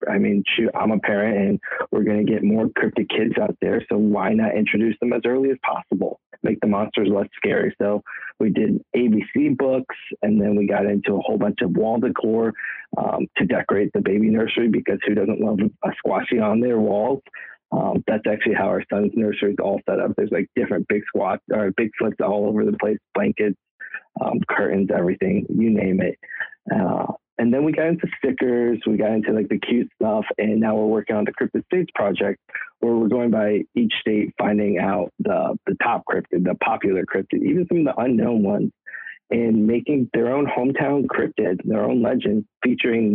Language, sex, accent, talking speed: English, male, American, 200 wpm